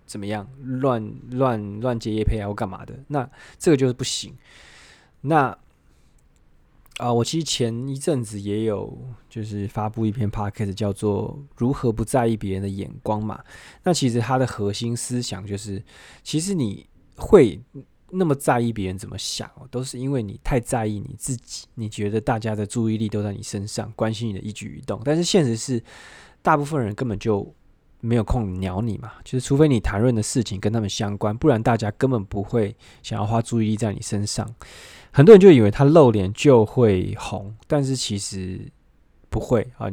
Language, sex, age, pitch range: Chinese, male, 20-39, 105-130 Hz